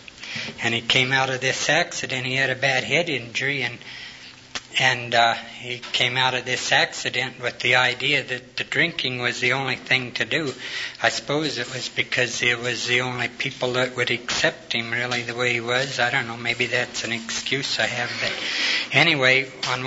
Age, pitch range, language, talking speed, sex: 60-79, 120-135 Hz, English, 195 wpm, male